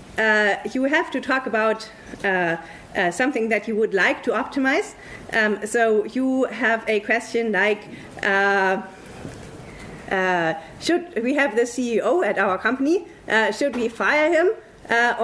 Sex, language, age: female, English, 30-49